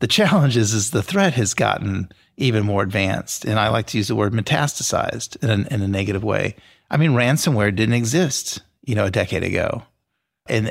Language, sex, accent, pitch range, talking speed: English, male, American, 100-120 Hz, 200 wpm